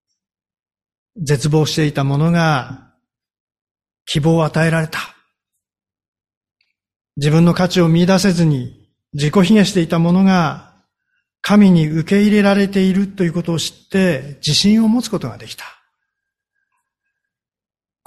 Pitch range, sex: 150-200 Hz, male